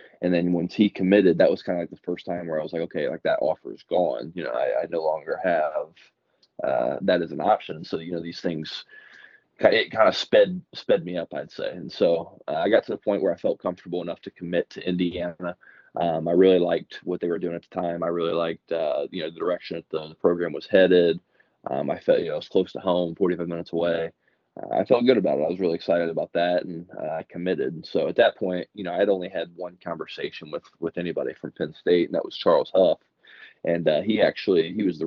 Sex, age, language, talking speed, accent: male, 20-39, English, 255 wpm, American